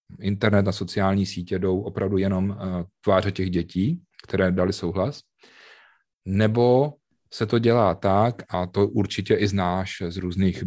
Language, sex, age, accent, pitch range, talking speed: Czech, male, 30-49, native, 95-110 Hz, 140 wpm